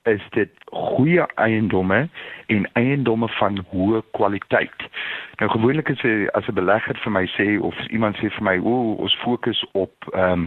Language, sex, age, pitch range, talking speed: English, male, 50-69, 95-120 Hz, 160 wpm